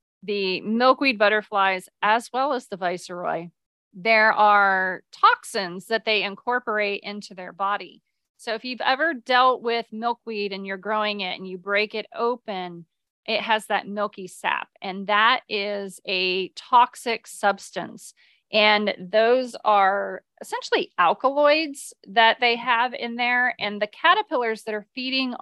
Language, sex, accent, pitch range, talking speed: English, female, American, 195-235 Hz, 140 wpm